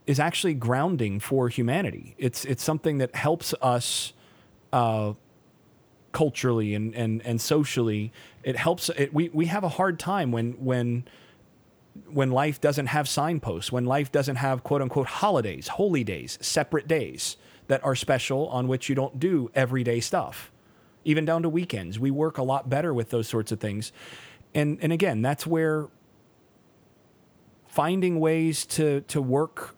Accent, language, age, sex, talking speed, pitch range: American, English, 30-49, male, 155 wpm, 125-155 Hz